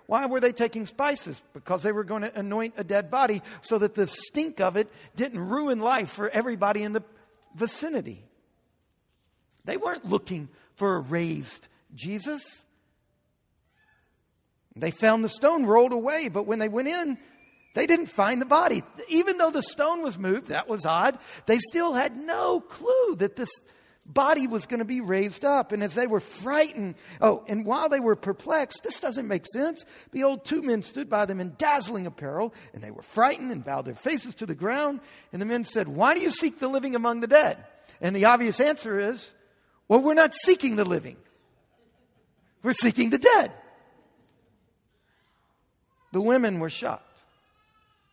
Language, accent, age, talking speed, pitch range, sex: English, American, 50-69, 175 wpm, 205-285 Hz, male